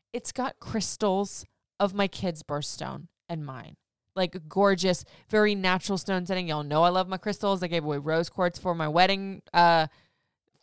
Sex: female